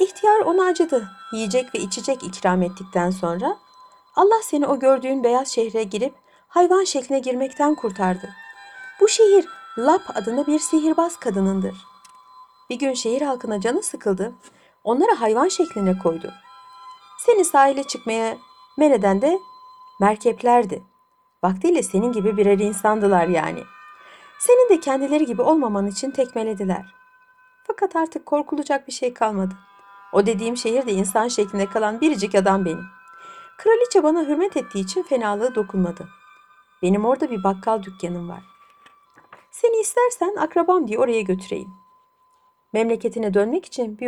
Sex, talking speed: female, 130 wpm